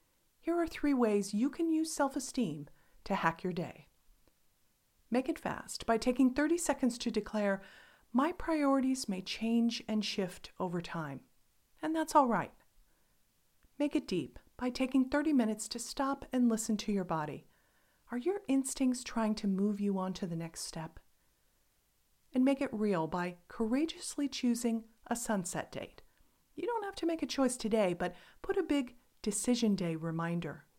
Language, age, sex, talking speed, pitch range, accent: English, 40-59, female, 165 wpm, 185-265 Hz, American